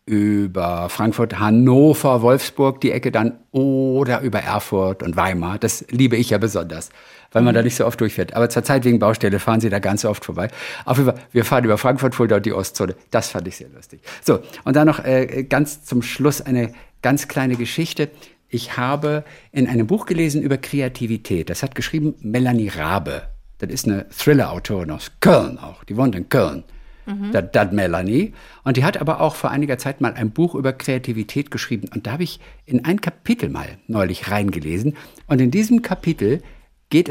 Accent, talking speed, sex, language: German, 190 wpm, male, German